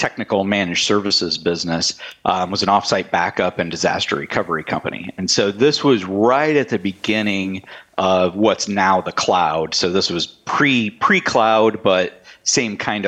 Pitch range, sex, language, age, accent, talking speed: 90-110 Hz, male, English, 40-59, American, 160 wpm